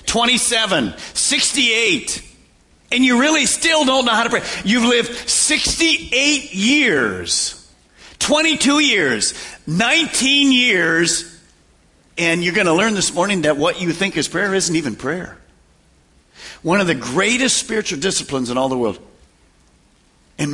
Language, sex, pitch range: English, male, 155-230 Hz